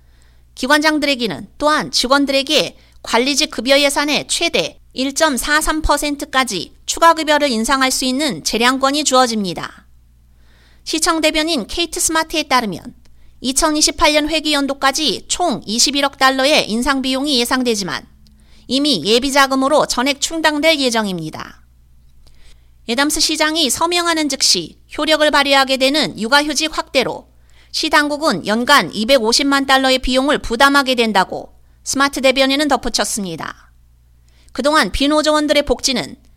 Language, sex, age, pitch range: Korean, female, 30-49, 215-300 Hz